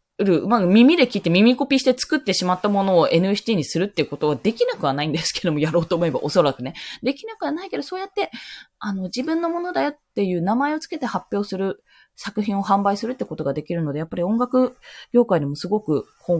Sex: female